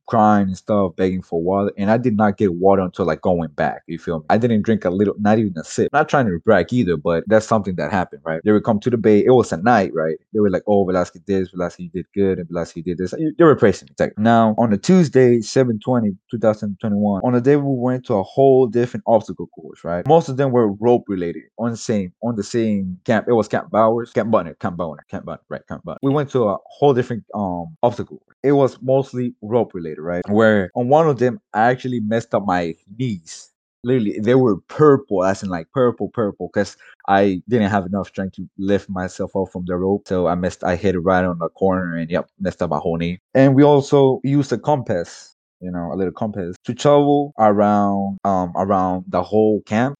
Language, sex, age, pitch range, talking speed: English, male, 20-39, 90-120 Hz, 235 wpm